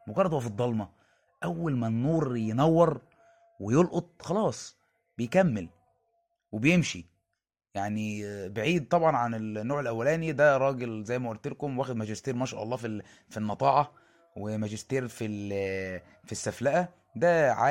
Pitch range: 110-150 Hz